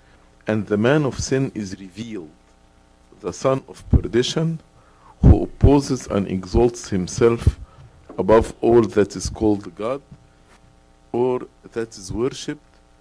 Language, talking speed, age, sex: English, 120 wpm, 50-69, male